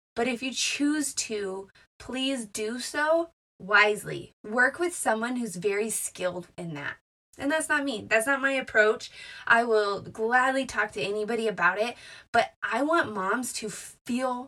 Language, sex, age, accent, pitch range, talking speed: English, female, 20-39, American, 205-265 Hz, 160 wpm